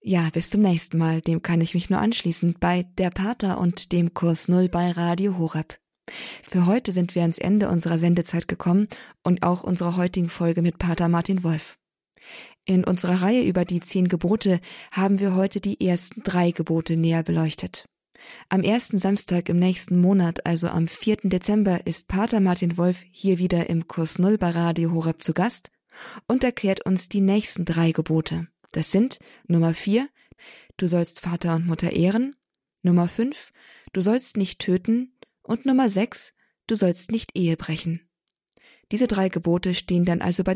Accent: German